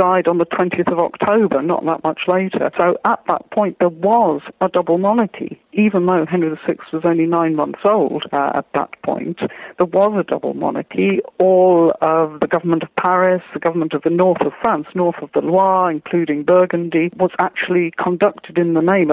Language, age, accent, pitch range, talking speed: English, 50-69, British, 160-185 Hz, 195 wpm